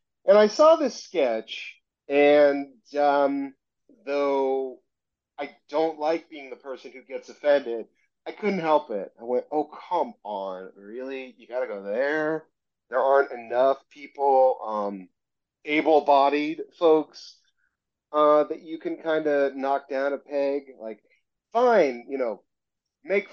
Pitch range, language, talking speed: 125-160 Hz, English, 140 wpm